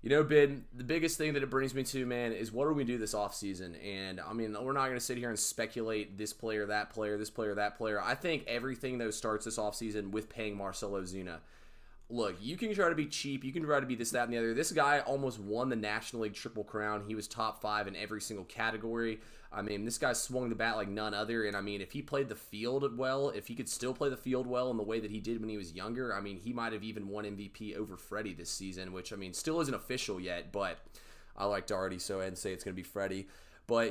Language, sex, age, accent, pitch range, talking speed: English, male, 20-39, American, 105-120 Hz, 270 wpm